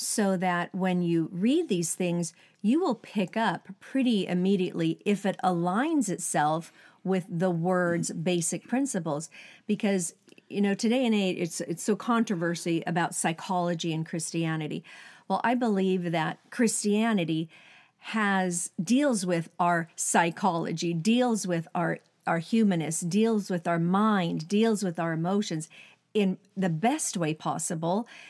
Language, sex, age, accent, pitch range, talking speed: English, female, 50-69, American, 175-230 Hz, 135 wpm